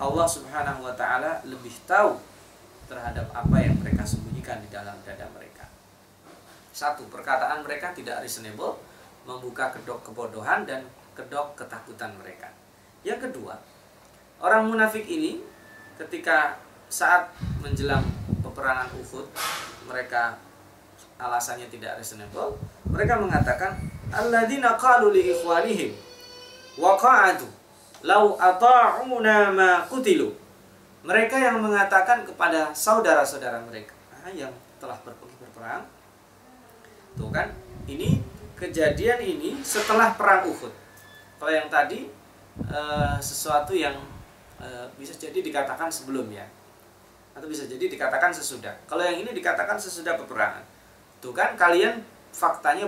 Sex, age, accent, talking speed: male, 30-49, native, 100 wpm